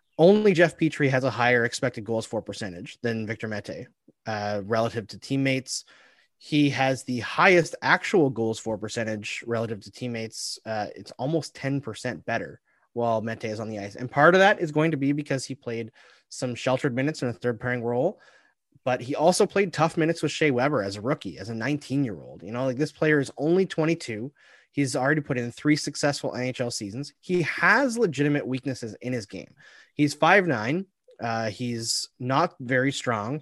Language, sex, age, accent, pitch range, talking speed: English, male, 30-49, American, 115-155 Hz, 185 wpm